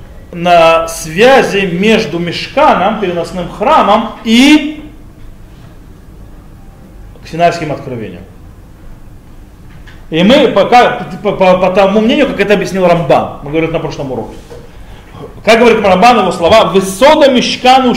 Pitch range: 160-215 Hz